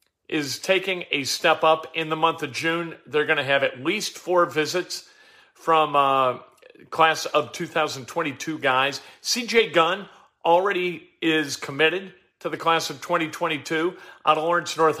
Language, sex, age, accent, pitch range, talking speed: English, male, 50-69, American, 145-180 Hz, 150 wpm